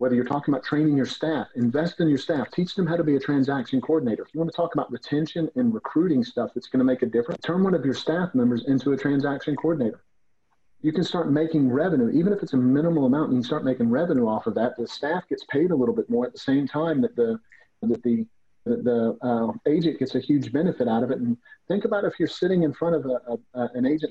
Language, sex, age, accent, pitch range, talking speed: English, male, 40-59, American, 125-180 Hz, 260 wpm